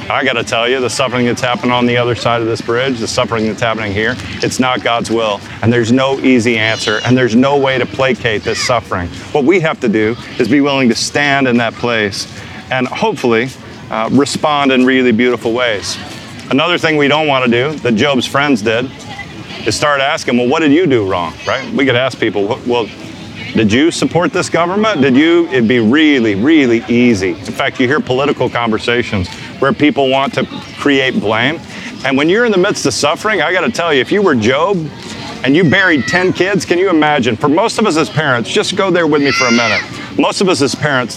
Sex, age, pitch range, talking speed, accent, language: male, 30-49, 115-145 Hz, 220 wpm, American, English